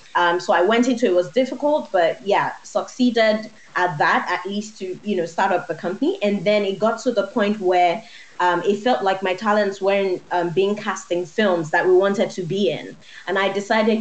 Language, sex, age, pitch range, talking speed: English, female, 20-39, 180-230 Hz, 215 wpm